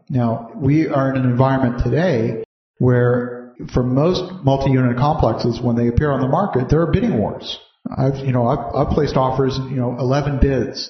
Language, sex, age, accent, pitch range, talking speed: English, male, 50-69, American, 120-145 Hz, 180 wpm